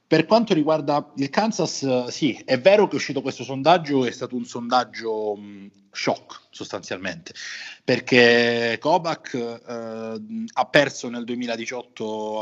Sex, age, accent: male, 30-49, native